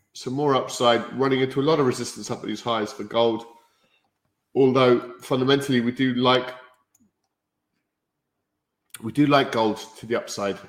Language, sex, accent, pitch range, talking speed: English, male, British, 105-125 Hz, 150 wpm